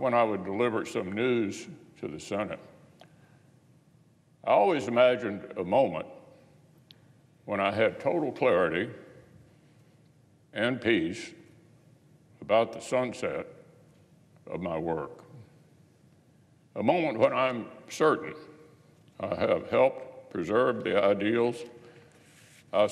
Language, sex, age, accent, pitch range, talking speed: English, male, 60-79, American, 115-155 Hz, 100 wpm